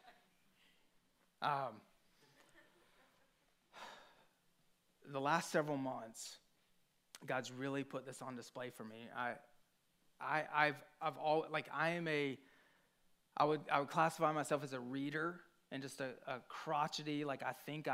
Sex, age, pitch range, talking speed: male, 30-49, 135-155 Hz, 130 wpm